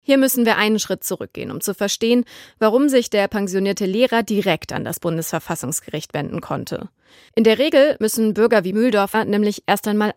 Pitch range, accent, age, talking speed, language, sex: 185-230 Hz, German, 30-49, 175 wpm, German, female